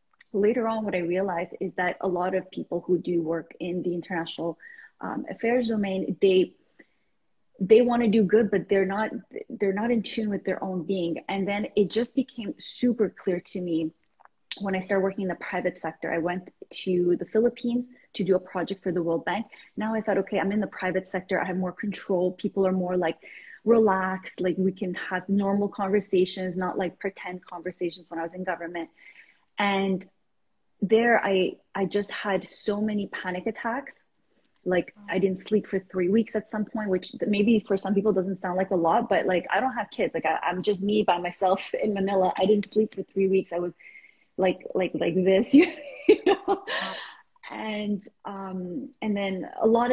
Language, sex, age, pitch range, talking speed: English, female, 20-39, 180-210 Hz, 200 wpm